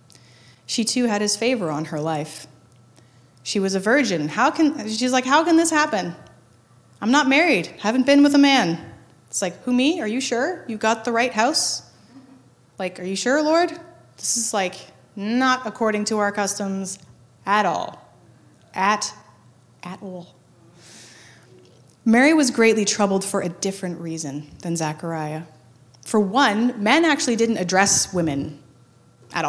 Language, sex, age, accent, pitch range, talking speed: English, female, 20-39, American, 155-250 Hz, 155 wpm